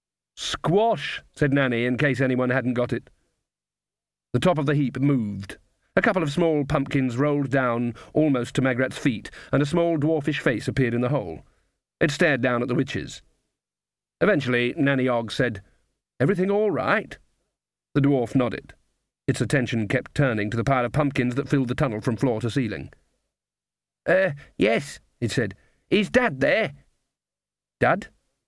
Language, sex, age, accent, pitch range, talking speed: English, male, 40-59, British, 125-155 Hz, 160 wpm